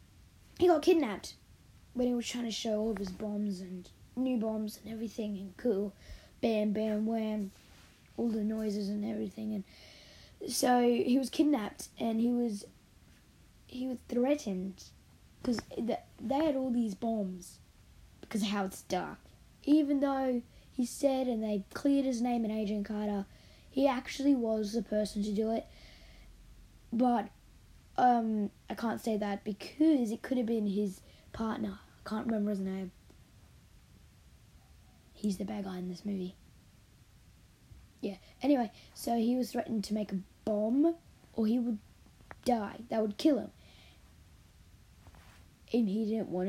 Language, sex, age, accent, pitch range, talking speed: English, female, 10-29, Australian, 205-245 Hz, 150 wpm